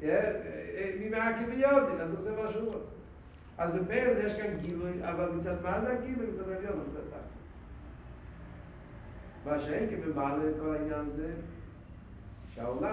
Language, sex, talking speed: Hebrew, male, 150 wpm